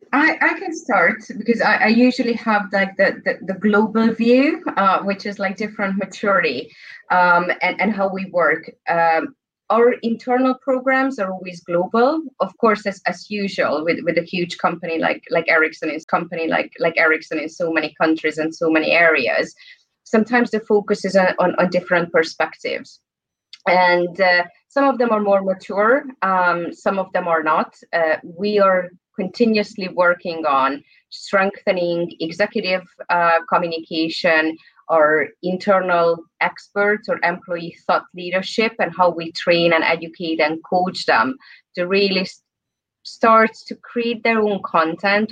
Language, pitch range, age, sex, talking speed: English, 175-220 Hz, 30-49, female, 155 wpm